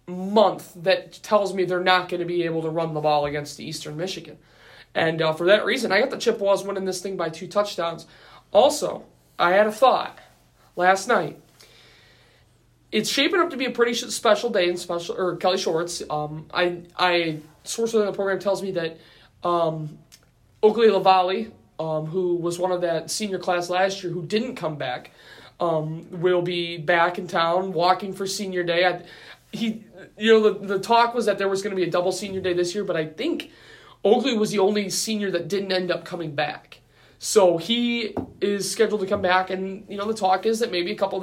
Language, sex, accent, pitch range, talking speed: English, male, American, 165-195 Hz, 210 wpm